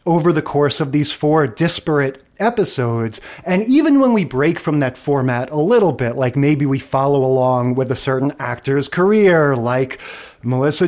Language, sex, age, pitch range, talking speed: English, male, 30-49, 140-180 Hz, 170 wpm